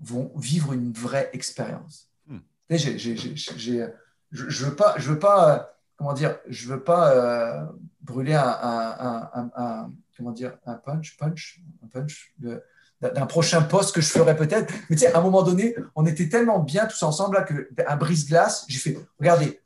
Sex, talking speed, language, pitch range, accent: male, 145 wpm, French, 135-190 Hz, French